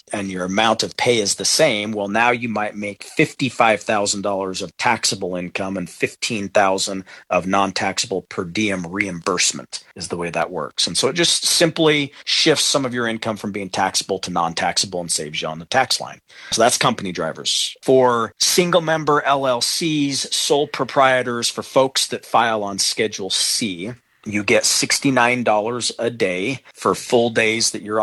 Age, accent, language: 40-59, American, English